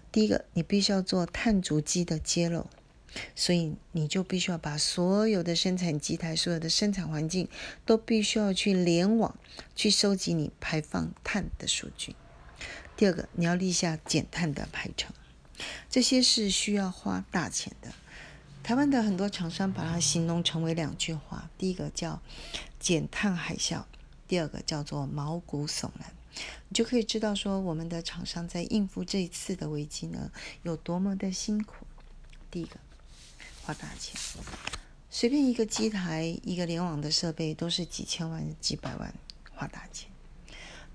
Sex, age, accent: female, 40-59, native